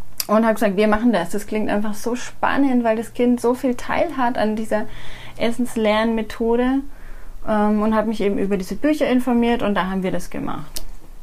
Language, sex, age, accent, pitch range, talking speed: German, female, 30-49, German, 215-255 Hz, 195 wpm